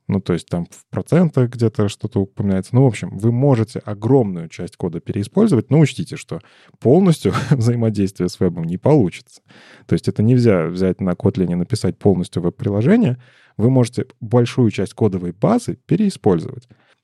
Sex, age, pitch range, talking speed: male, 20-39, 95-125 Hz, 160 wpm